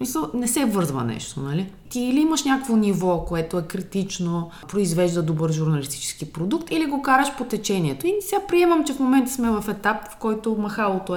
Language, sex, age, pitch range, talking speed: Bulgarian, female, 20-39, 155-205 Hz, 185 wpm